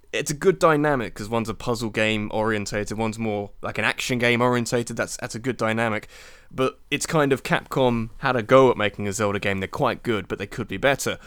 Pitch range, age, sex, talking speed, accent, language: 110-140 Hz, 20-39, male, 230 wpm, British, English